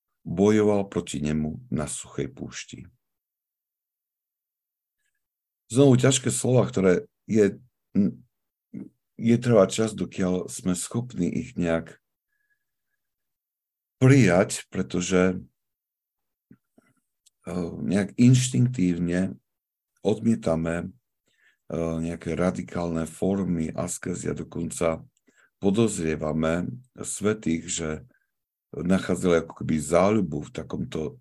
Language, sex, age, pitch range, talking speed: Slovak, male, 60-79, 80-115 Hz, 75 wpm